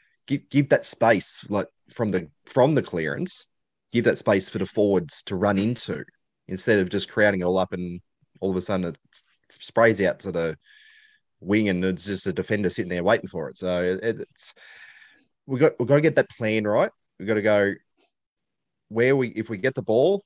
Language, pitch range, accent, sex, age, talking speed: English, 90-125 Hz, Australian, male, 30-49, 205 wpm